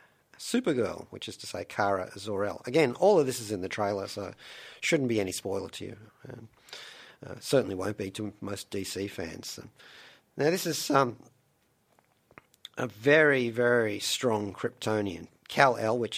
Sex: male